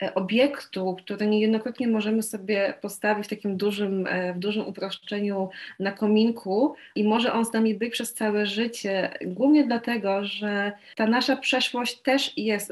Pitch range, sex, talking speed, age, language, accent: 190-225 Hz, female, 145 wpm, 20-39, Polish, native